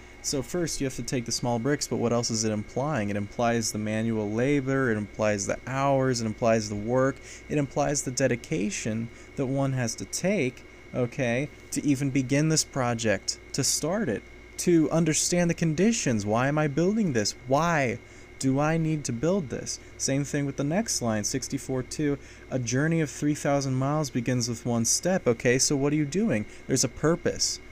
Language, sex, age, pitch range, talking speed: English, male, 20-39, 115-145 Hz, 190 wpm